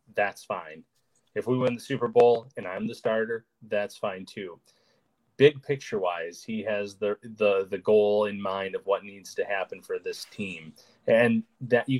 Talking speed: 185 wpm